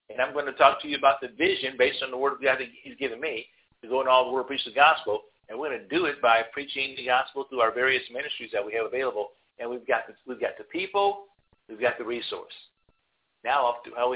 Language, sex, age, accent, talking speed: English, male, 50-69, American, 255 wpm